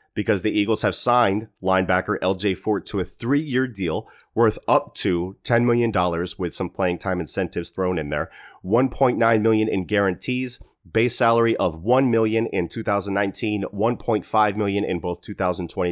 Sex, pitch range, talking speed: male, 90-110 Hz, 150 wpm